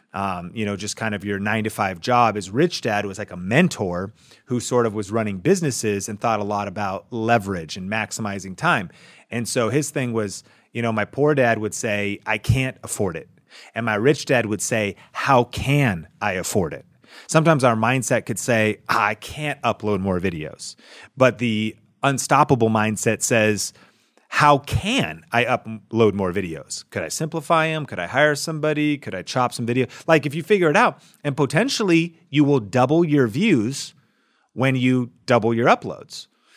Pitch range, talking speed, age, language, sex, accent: 110-145 Hz, 180 wpm, 30-49, English, male, American